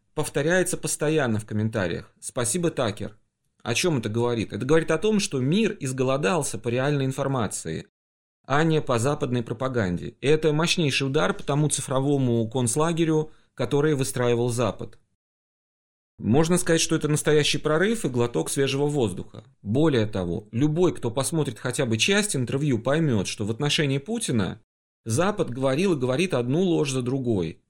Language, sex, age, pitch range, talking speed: Russian, male, 30-49, 115-160 Hz, 145 wpm